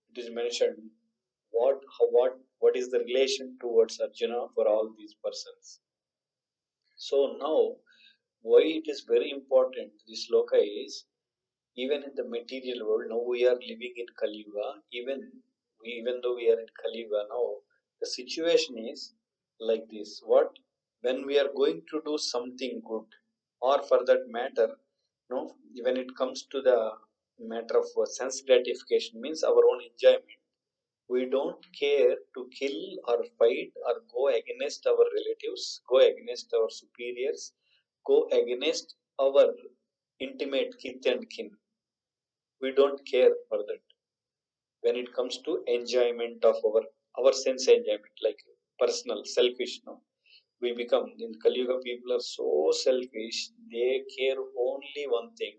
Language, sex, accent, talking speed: English, male, Indian, 145 wpm